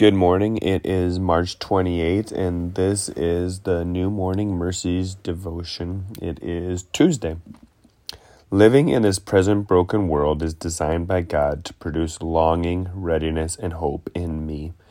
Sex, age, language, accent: male, 30-49, English, American